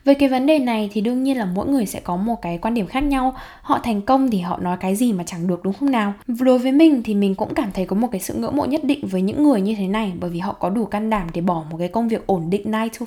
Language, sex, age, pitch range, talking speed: Vietnamese, female, 10-29, 190-265 Hz, 330 wpm